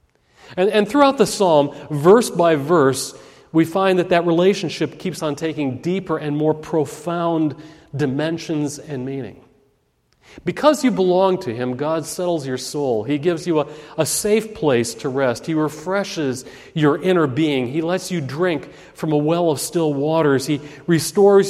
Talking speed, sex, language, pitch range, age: 160 wpm, male, English, 150-195 Hz, 40-59